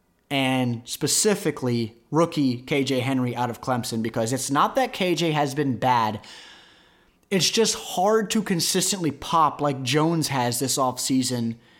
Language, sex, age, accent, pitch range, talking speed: English, male, 30-49, American, 130-170 Hz, 135 wpm